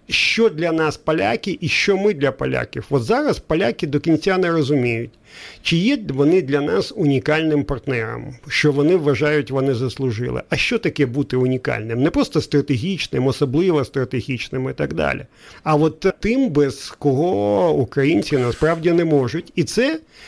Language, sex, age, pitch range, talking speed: Ukrainian, male, 50-69, 130-170 Hz, 155 wpm